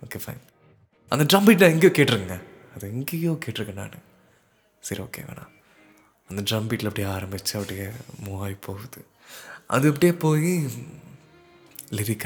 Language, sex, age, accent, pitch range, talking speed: Tamil, male, 20-39, native, 100-135 Hz, 125 wpm